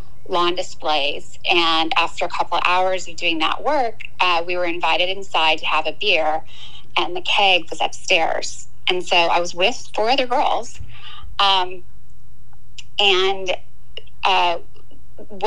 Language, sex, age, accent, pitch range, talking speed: English, female, 30-49, American, 160-190 Hz, 145 wpm